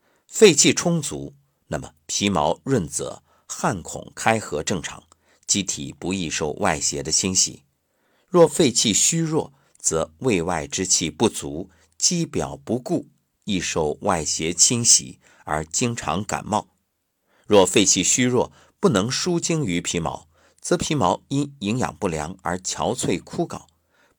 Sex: male